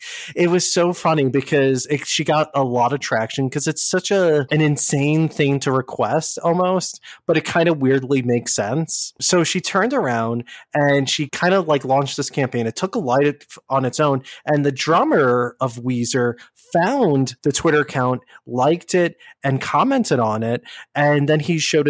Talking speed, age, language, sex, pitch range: 185 wpm, 20-39, English, male, 120-155 Hz